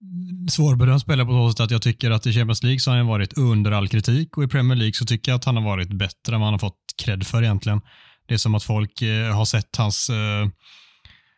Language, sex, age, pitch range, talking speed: Swedish, male, 20-39, 105-125 Hz, 255 wpm